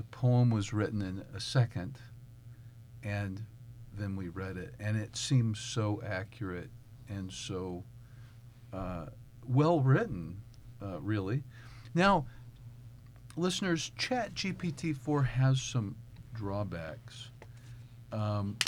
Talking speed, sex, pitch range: 105 wpm, male, 110-125 Hz